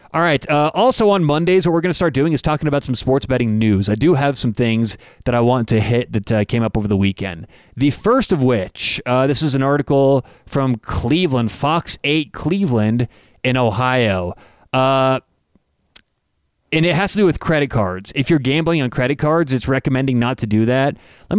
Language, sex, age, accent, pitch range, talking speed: English, male, 30-49, American, 120-150 Hz, 210 wpm